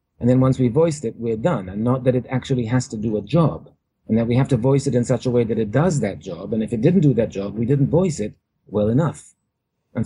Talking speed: 285 wpm